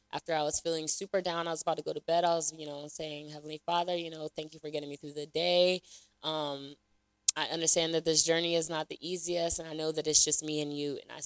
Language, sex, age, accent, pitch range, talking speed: English, female, 20-39, American, 145-185 Hz, 270 wpm